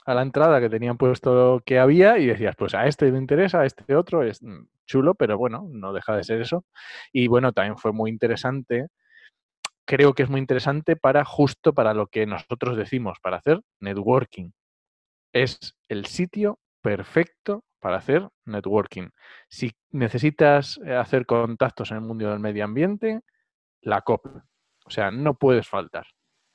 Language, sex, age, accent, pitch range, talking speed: Spanish, male, 30-49, Spanish, 110-145 Hz, 165 wpm